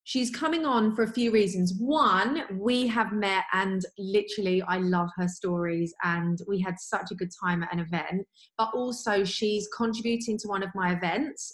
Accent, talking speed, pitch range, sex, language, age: British, 185 wpm, 180-220 Hz, female, English, 30-49